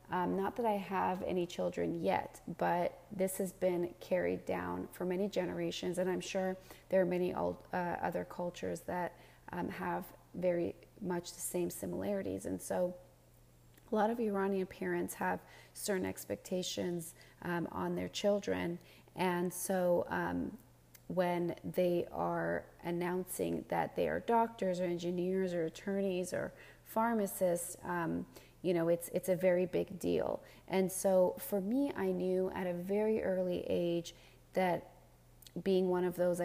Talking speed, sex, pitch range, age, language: 145 wpm, female, 165-185 Hz, 30-49, English